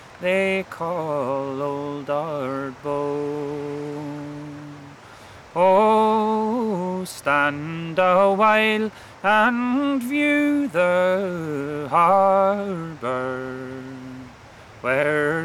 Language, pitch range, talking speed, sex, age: English, 150-230 Hz, 50 wpm, male, 30-49